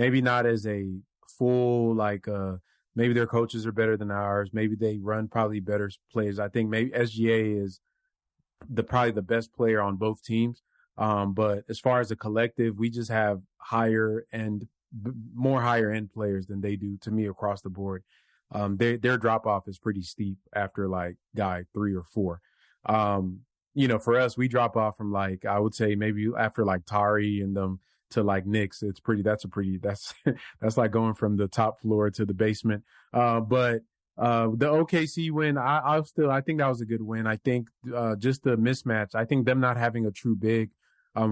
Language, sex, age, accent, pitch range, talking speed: English, male, 30-49, American, 105-120 Hz, 205 wpm